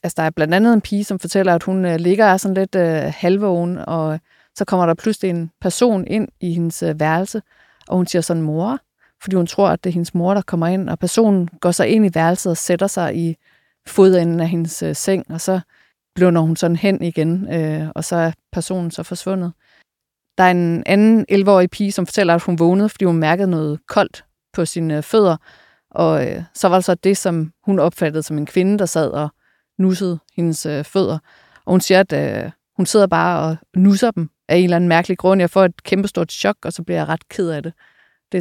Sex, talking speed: female, 215 wpm